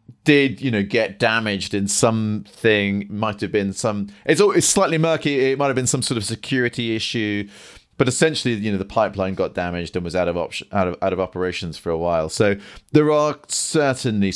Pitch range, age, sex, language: 90-120 Hz, 30-49, male, English